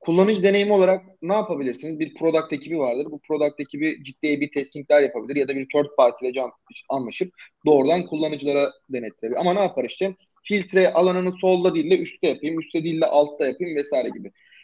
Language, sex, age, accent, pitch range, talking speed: Turkish, male, 30-49, native, 150-205 Hz, 180 wpm